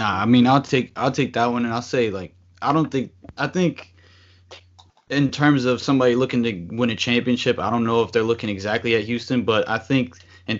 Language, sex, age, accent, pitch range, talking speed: English, male, 20-39, American, 105-125 Hz, 230 wpm